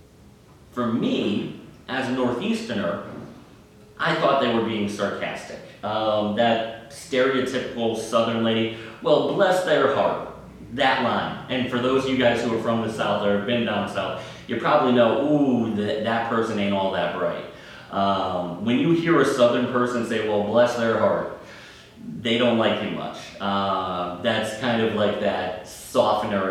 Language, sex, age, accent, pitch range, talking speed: English, male, 30-49, American, 105-130 Hz, 165 wpm